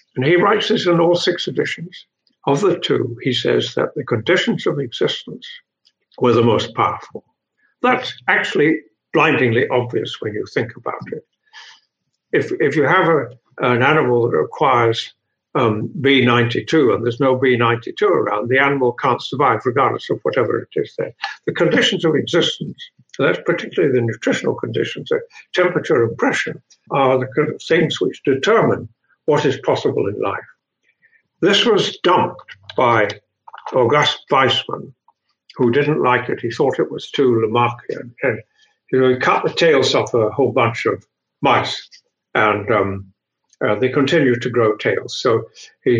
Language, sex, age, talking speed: English, male, 60-79, 155 wpm